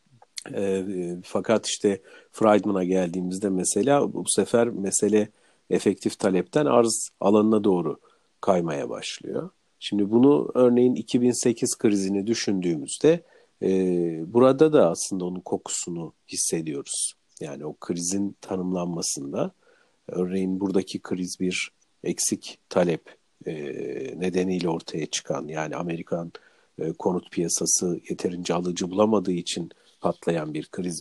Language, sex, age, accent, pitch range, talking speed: Turkish, male, 50-69, native, 90-110 Hz, 110 wpm